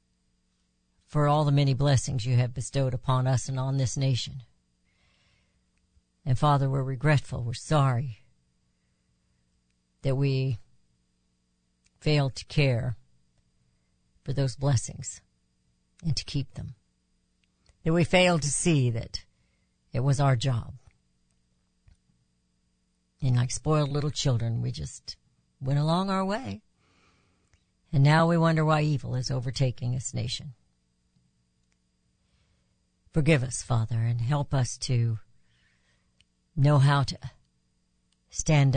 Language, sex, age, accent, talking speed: English, female, 60-79, American, 115 wpm